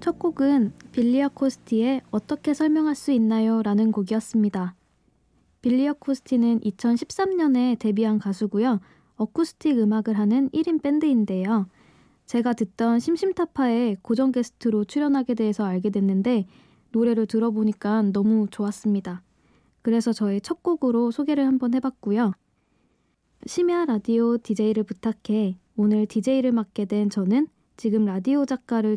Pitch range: 215-265 Hz